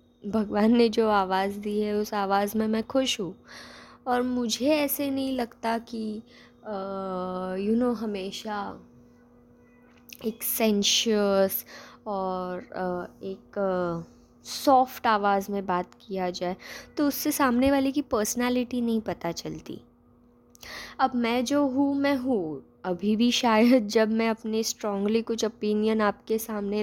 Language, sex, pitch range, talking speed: Hindi, female, 180-240 Hz, 135 wpm